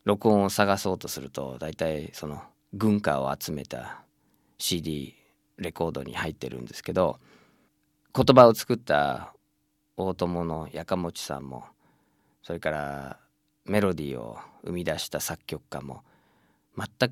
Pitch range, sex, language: 75-105 Hz, male, Japanese